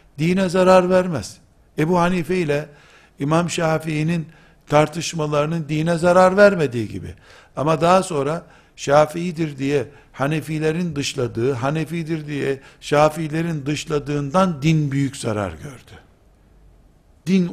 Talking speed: 100 wpm